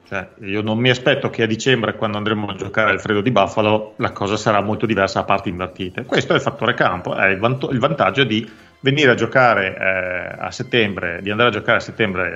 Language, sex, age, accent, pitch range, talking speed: Italian, male, 40-59, native, 105-135 Hz, 230 wpm